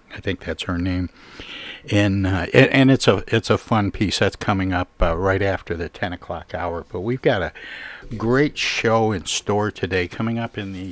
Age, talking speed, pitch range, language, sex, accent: 60-79, 205 wpm, 95-115 Hz, English, male, American